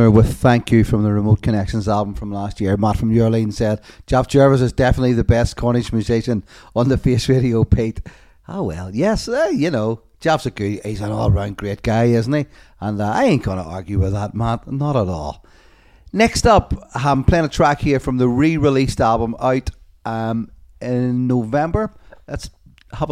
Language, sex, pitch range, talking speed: English, male, 105-125 Hz, 190 wpm